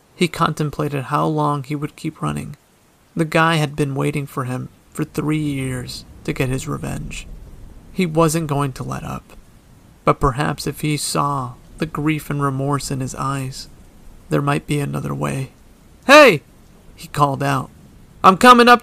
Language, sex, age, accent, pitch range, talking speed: English, male, 30-49, American, 135-155 Hz, 165 wpm